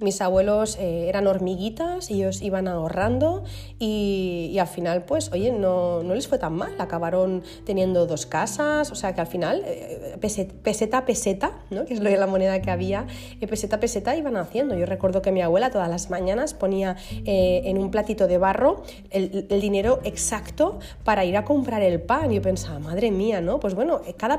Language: Spanish